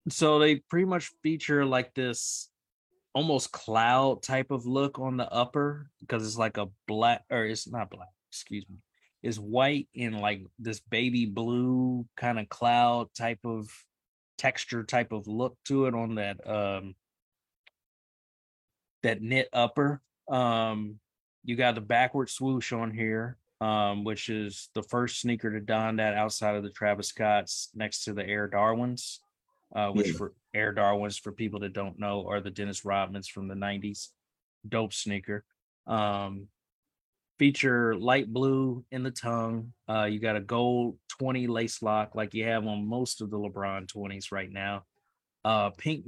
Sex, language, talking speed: male, English, 160 wpm